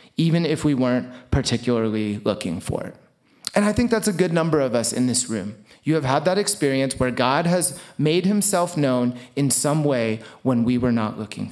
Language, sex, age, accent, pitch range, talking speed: English, male, 30-49, American, 125-175 Hz, 205 wpm